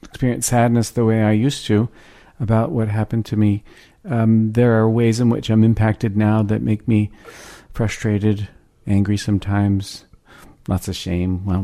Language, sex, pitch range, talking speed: English, male, 100-120 Hz, 160 wpm